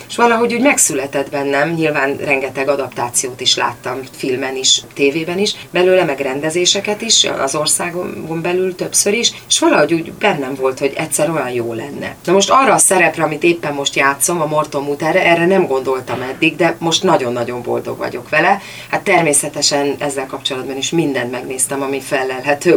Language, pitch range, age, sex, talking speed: Hungarian, 135-165 Hz, 30-49, female, 170 wpm